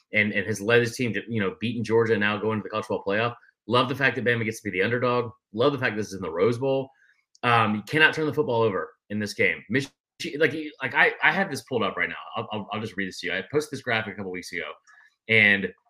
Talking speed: 290 wpm